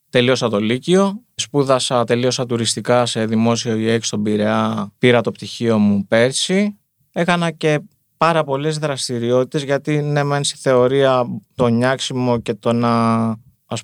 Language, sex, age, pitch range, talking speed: Greek, male, 20-39, 115-135 Hz, 140 wpm